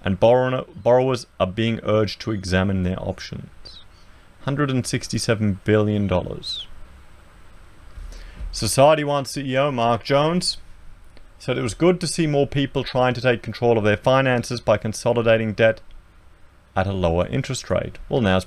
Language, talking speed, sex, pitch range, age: English, 135 wpm, male, 90-125 Hz, 40-59